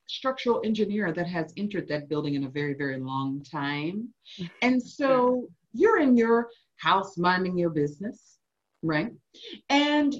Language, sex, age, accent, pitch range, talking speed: English, female, 40-59, American, 165-275 Hz, 140 wpm